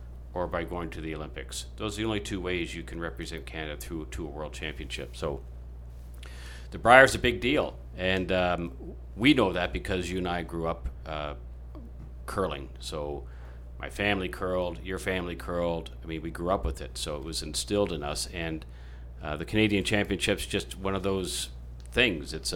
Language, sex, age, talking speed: English, male, 40-59, 190 wpm